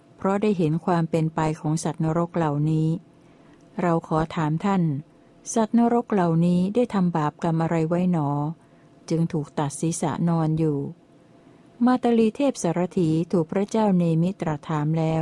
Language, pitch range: Thai, 160-185 Hz